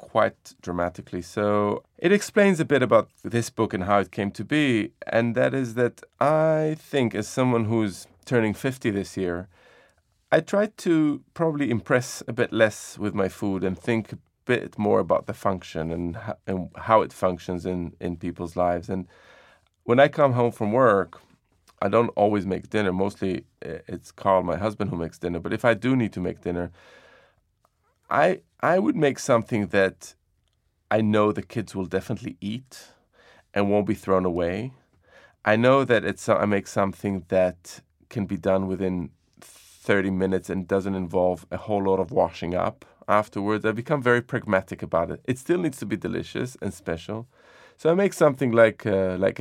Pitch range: 95-115 Hz